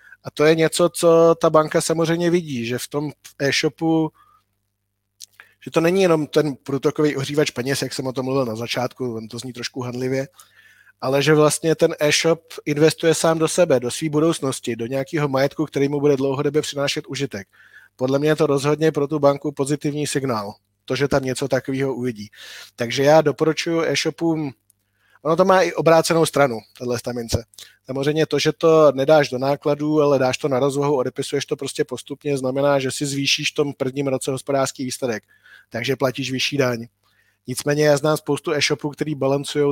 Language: Czech